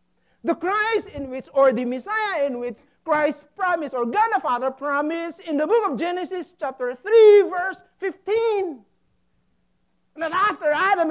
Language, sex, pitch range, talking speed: English, male, 185-295 Hz, 150 wpm